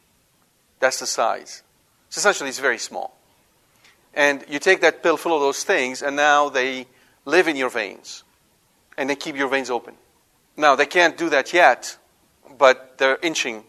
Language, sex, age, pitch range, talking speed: English, male, 40-59, 125-155 Hz, 170 wpm